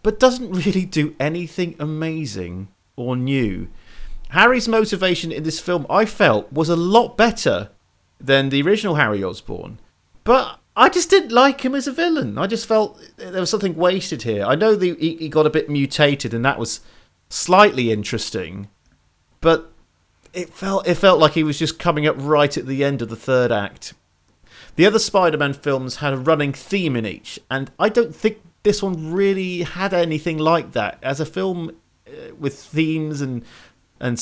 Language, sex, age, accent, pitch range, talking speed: English, male, 30-49, British, 115-170 Hz, 175 wpm